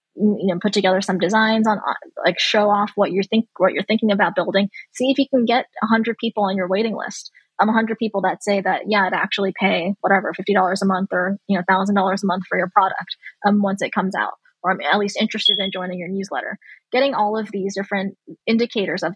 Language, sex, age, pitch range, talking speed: English, female, 20-39, 190-210 Hz, 240 wpm